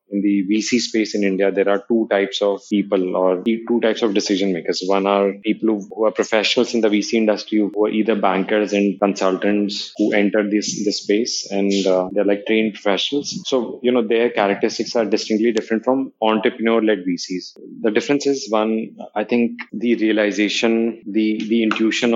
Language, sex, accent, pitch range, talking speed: English, male, Indian, 100-115 Hz, 180 wpm